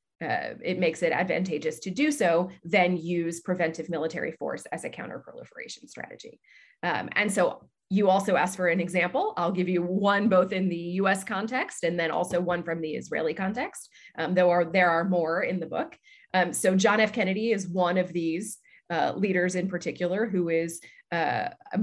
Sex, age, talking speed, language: female, 20-39, 185 wpm, English